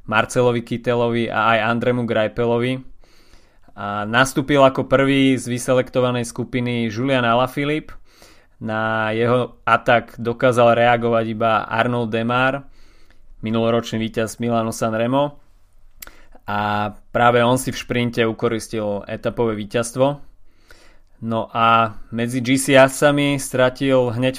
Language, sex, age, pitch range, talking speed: Slovak, male, 20-39, 110-125 Hz, 105 wpm